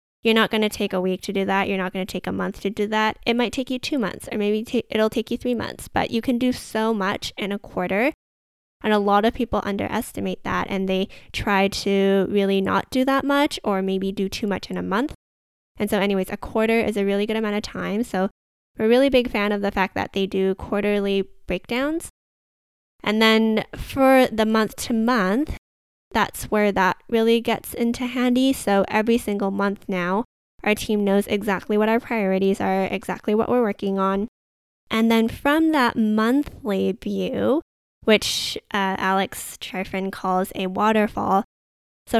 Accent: American